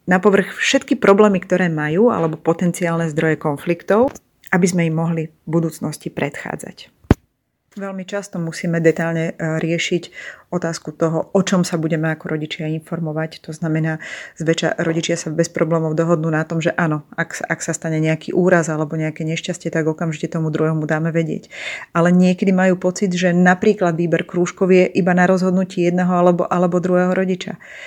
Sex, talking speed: female, 160 wpm